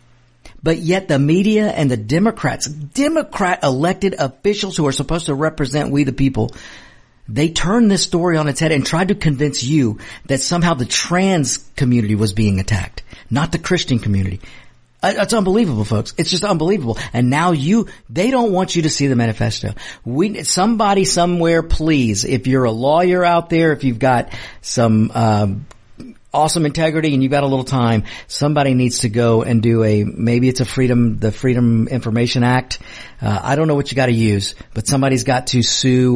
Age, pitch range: 50-69, 115-155 Hz